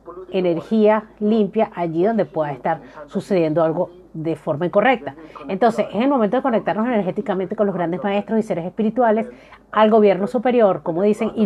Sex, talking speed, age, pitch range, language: female, 160 wpm, 40-59, 175-225 Hz, Spanish